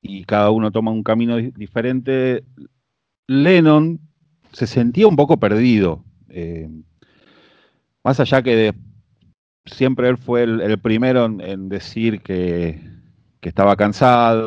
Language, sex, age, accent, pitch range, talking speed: Spanish, male, 40-59, Argentinian, 95-125 Hz, 125 wpm